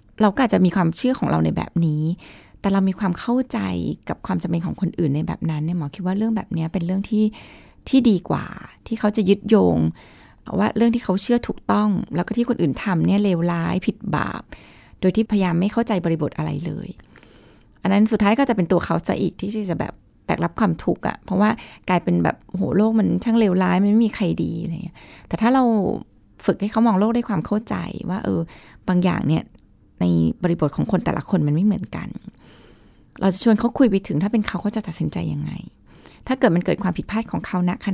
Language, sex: Thai, female